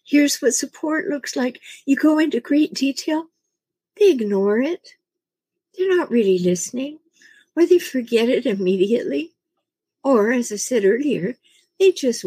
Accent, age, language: American, 60-79, English